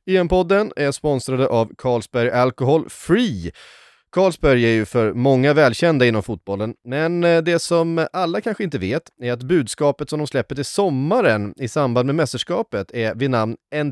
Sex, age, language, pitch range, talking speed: male, 30-49, Swedish, 110-160 Hz, 175 wpm